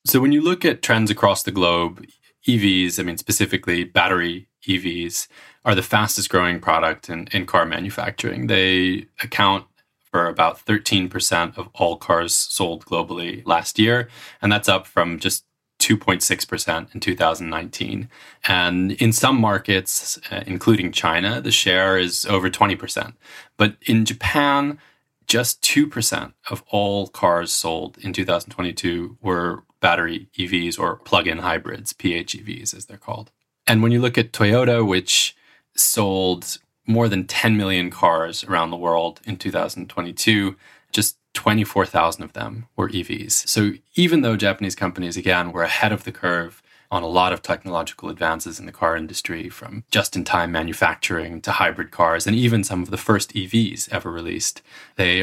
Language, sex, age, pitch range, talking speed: English, male, 20-39, 90-110 Hz, 150 wpm